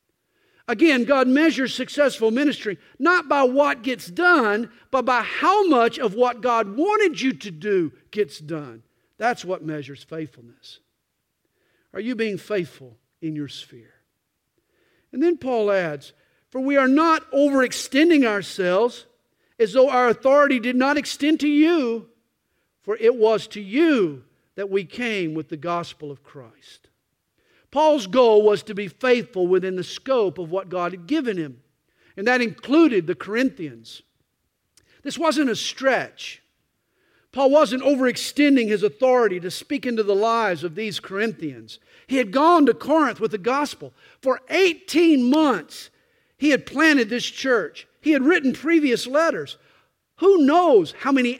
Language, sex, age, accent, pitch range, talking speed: English, male, 50-69, American, 185-290 Hz, 150 wpm